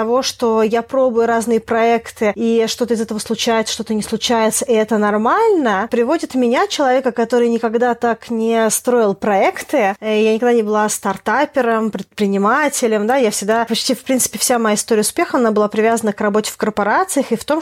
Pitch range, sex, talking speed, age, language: 220-245 Hz, female, 180 wpm, 20-39, Russian